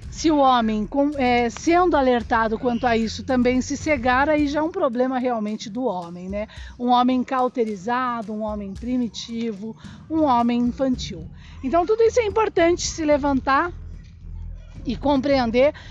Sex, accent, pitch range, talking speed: female, Brazilian, 245-320 Hz, 145 wpm